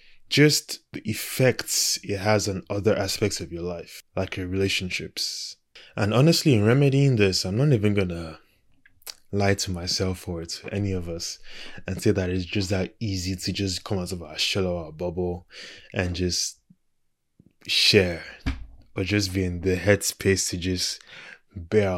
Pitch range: 90-105 Hz